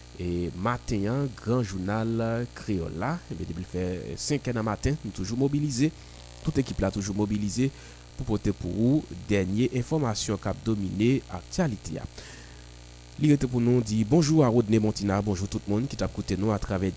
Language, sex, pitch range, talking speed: French, male, 95-135 Hz, 165 wpm